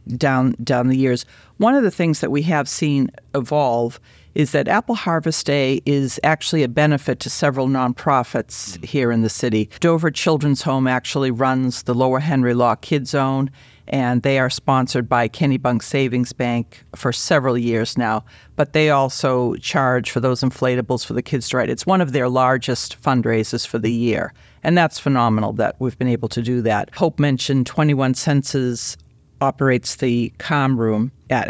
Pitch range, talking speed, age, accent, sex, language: 120-145 Hz, 175 wpm, 50-69, American, female, English